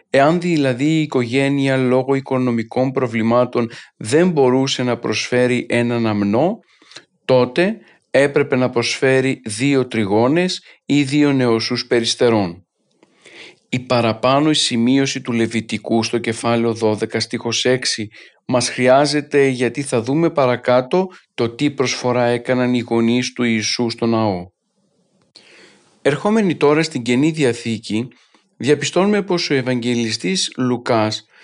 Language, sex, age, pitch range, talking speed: Greek, male, 40-59, 120-145 Hz, 115 wpm